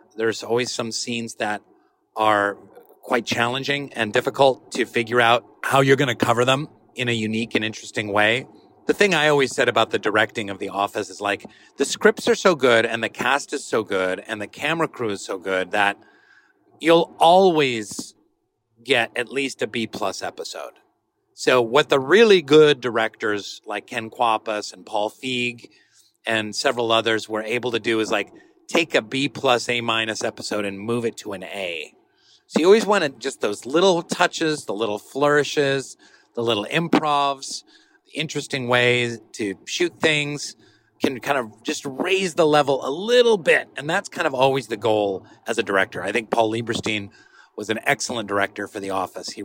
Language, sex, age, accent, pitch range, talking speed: English, male, 40-59, American, 110-150 Hz, 180 wpm